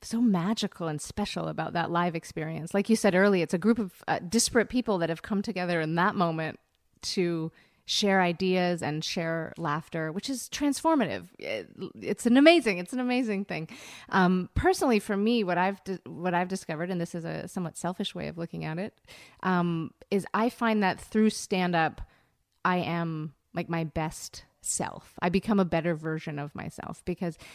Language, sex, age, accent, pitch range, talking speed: English, female, 30-49, American, 165-205 Hz, 185 wpm